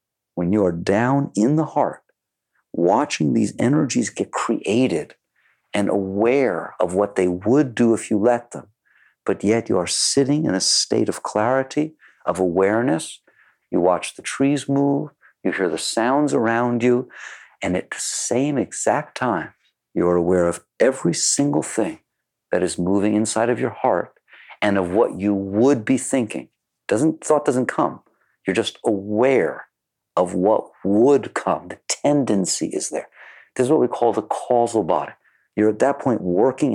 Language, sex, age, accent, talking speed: English, male, 50-69, American, 165 wpm